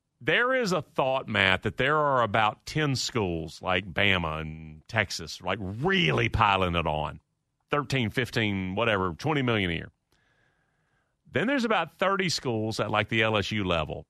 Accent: American